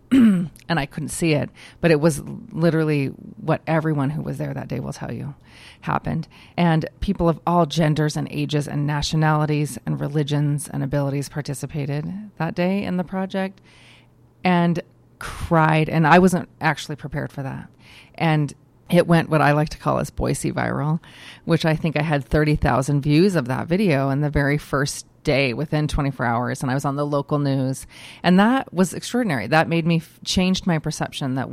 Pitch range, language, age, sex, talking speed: 140-170 Hz, English, 30-49, female, 180 wpm